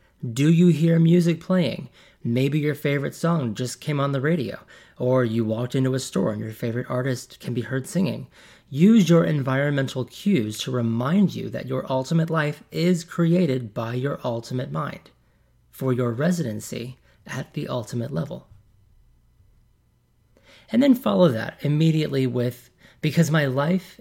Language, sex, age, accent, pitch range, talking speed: English, male, 30-49, American, 120-155 Hz, 150 wpm